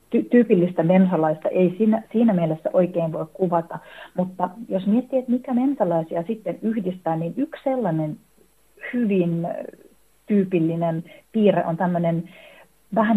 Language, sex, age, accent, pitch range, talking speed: Finnish, female, 40-59, native, 165-210 Hz, 115 wpm